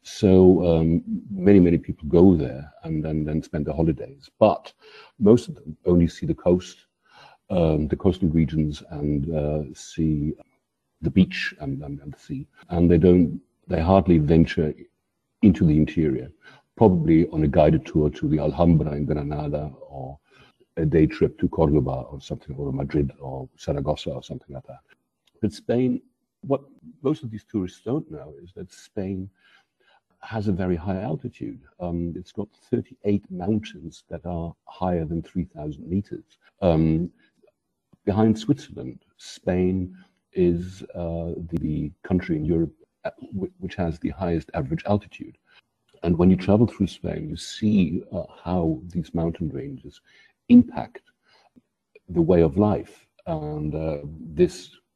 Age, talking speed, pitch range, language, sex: 60-79, 145 wpm, 80-95 Hz, English, male